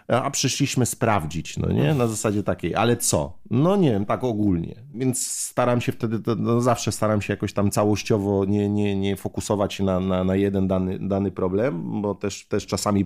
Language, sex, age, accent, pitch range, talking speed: Polish, male, 30-49, native, 105-125 Hz, 190 wpm